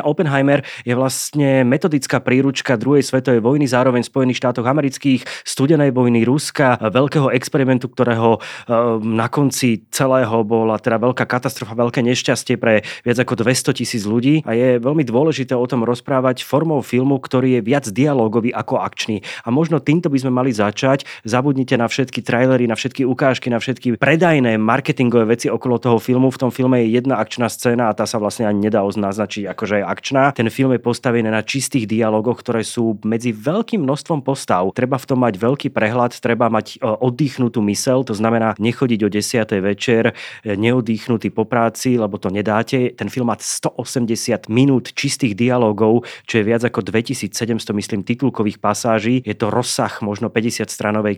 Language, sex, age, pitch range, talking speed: Slovak, male, 30-49, 110-130 Hz, 165 wpm